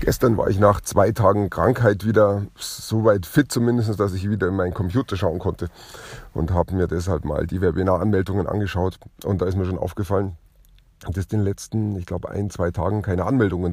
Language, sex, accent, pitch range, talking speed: German, male, German, 90-110 Hz, 195 wpm